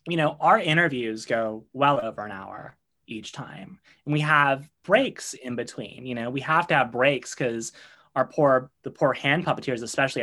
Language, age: English, 20-39